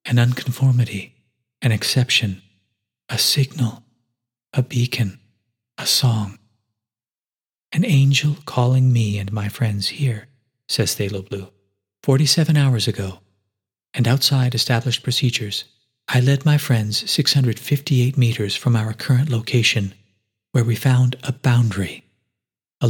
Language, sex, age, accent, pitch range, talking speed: English, male, 40-59, American, 105-130 Hz, 115 wpm